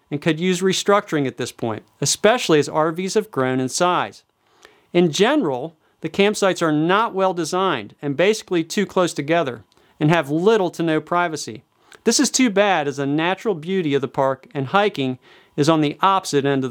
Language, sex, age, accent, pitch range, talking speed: English, male, 40-59, American, 150-205 Hz, 185 wpm